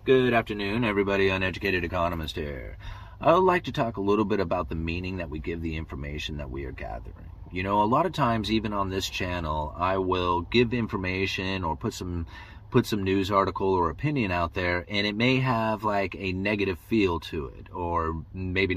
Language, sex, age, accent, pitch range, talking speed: English, male, 30-49, American, 85-105 Hz, 200 wpm